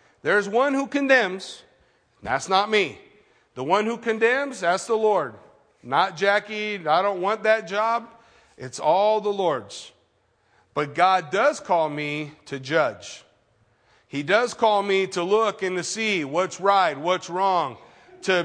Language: English